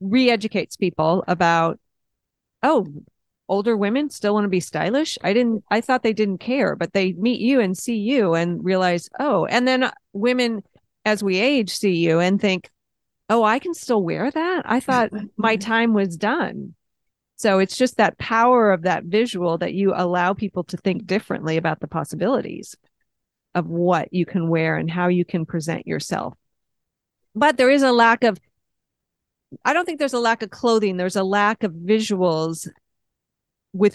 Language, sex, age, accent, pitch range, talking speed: English, female, 40-59, American, 175-225 Hz, 175 wpm